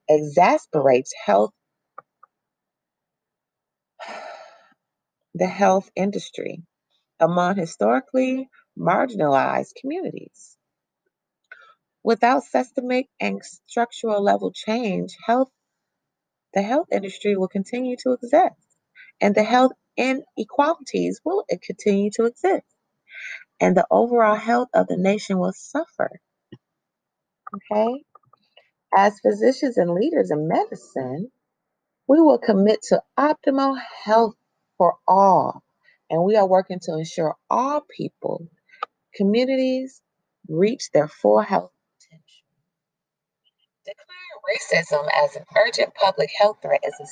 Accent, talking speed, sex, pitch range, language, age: American, 100 wpm, female, 180-265 Hz, English, 30-49